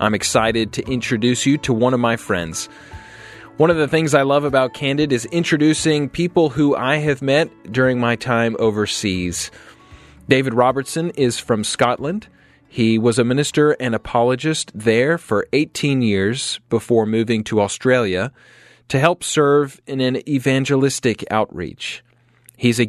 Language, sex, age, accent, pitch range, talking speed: English, male, 30-49, American, 115-145 Hz, 150 wpm